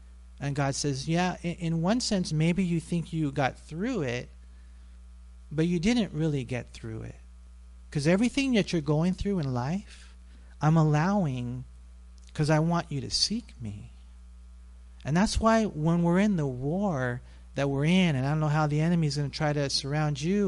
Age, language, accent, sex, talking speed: 40-59, English, American, male, 180 wpm